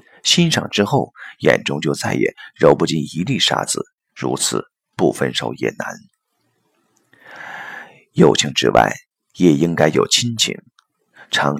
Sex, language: male, Chinese